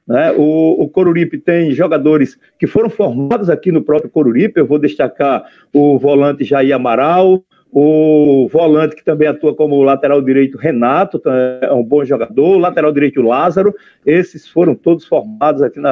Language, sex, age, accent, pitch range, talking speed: Portuguese, male, 50-69, Brazilian, 145-180 Hz, 155 wpm